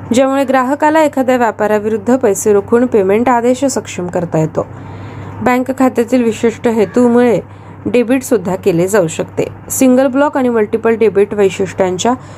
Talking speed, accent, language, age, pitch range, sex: 125 wpm, native, Marathi, 20-39, 200-260 Hz, female